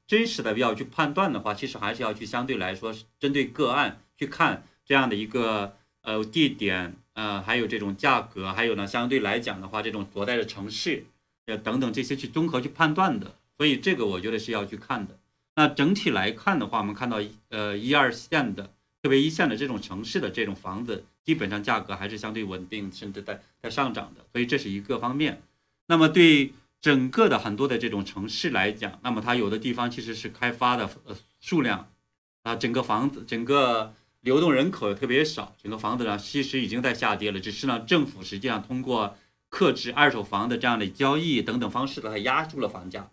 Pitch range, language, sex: 105-135 Hz, Chinese, male